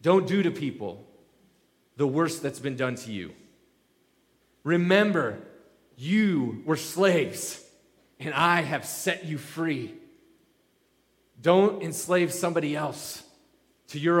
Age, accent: 30-49, American